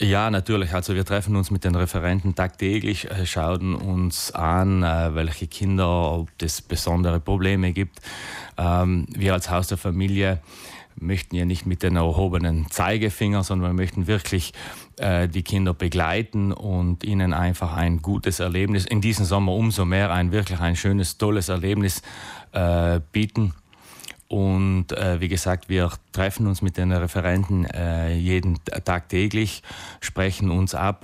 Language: German